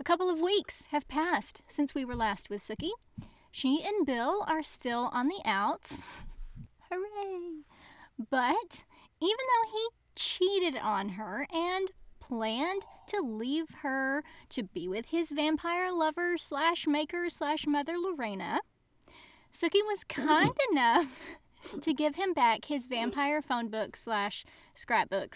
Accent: American